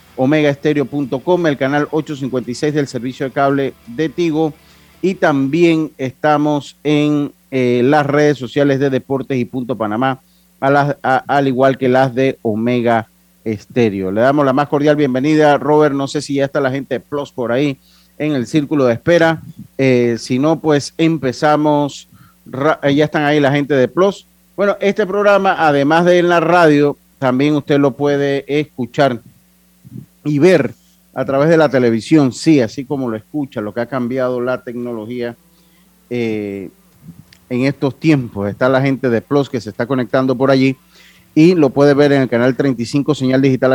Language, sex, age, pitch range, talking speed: Spanish, male, 40-59, 125-150 Hz, 175 wpm